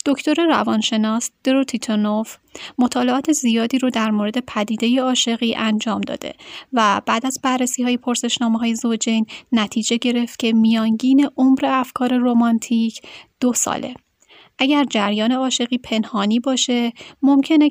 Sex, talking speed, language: female, 120 wpm, Persian